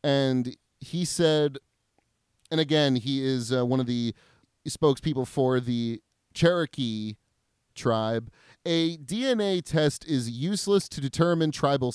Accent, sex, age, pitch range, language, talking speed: American, male, 30-49, 120-165 Hz, English, 120 wpm